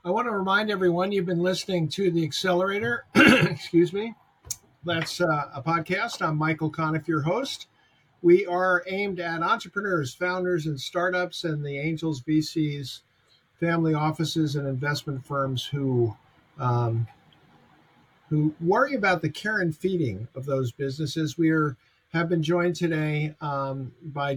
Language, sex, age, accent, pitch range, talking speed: English, male, 50-69, American, 145-180 Hz, 145 wpm